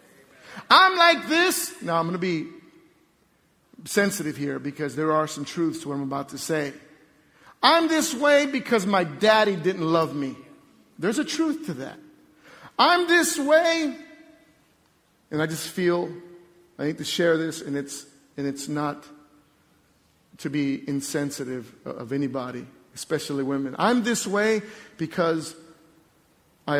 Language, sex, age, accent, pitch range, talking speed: English, male, 50-69, American, 155-220 Hz, 145 wpm